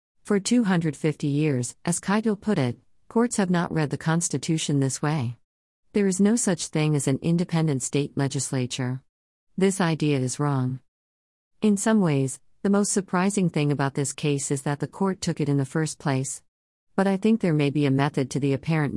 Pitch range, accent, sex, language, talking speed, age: 130-165 Hz, American, female, English, 190 wpm, 50-69